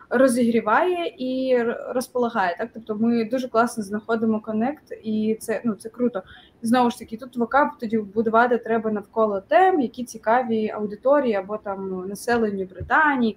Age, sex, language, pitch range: 20-39, female, Ukrainian, 220-310 Hz